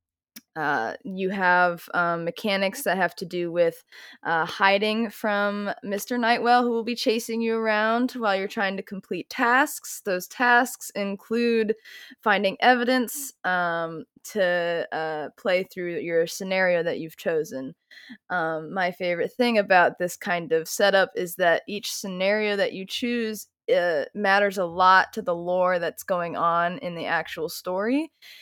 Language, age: English, 20-39